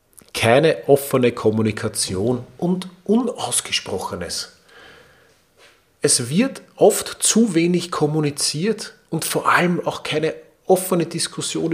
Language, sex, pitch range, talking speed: German, male, 115-155 Hz, 90 wpm